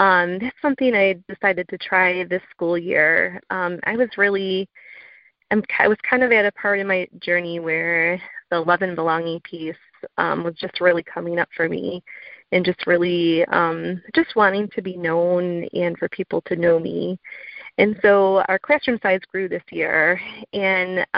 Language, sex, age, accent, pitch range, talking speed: English, female, 30-49, American, 175-215 Hz, 175 wpm